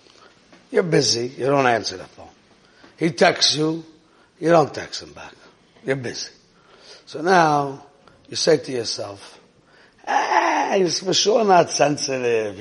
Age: 60-79